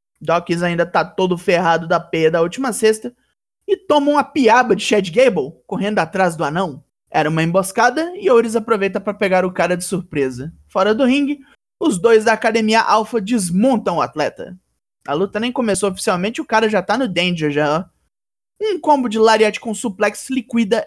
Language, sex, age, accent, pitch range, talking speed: Portuguese, male, 20-39, Brazilian, 175-235 Hz, 185 wpm